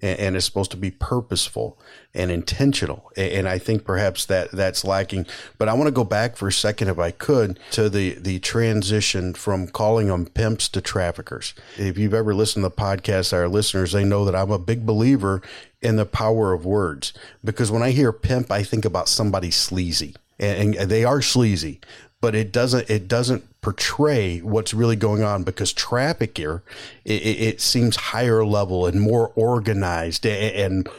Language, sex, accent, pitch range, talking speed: English, male, American, 95-115 Hz, 180 wpm